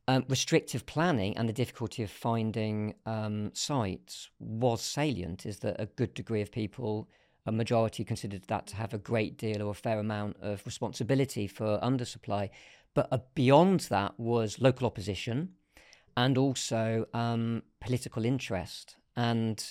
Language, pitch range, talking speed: English, 110-125 Hz, 150 wpm